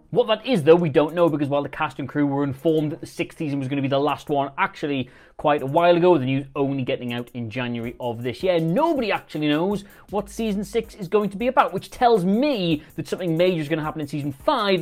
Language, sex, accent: English, male, British